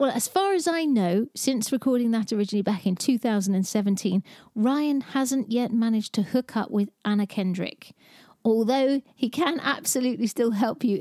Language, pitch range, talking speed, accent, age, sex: English, 200-250 Hz, 165 wpm, British, 40-59, female